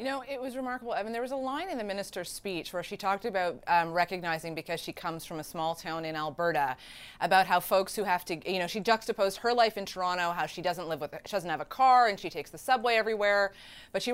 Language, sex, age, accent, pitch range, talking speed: English, female, 30-49, American, 175-235 Hz, 265 wpm